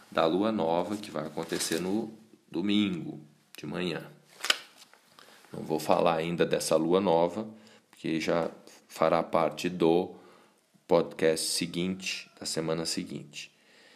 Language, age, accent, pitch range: Portuguese, 40-59, Brazilian, 80-105 Hz